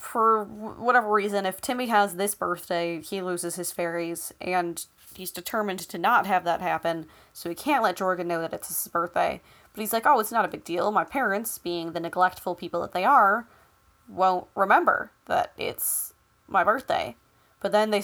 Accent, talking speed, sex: American, 190 wpm, female